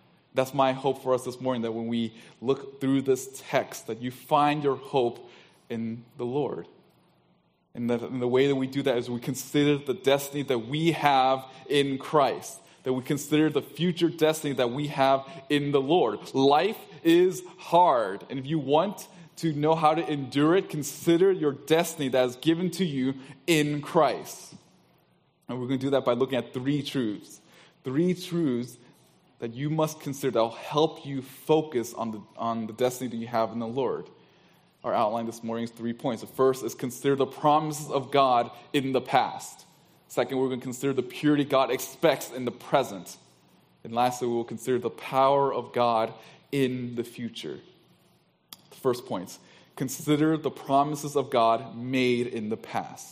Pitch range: 120-150 Hz